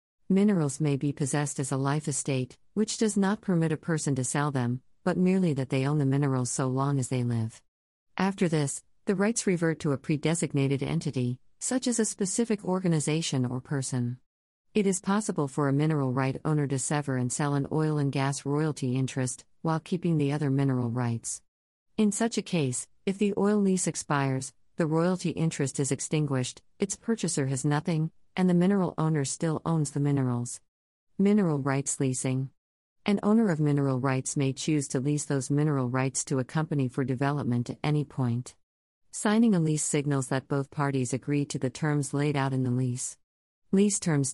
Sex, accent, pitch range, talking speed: female, American, 130-165 Hz, 185 wpm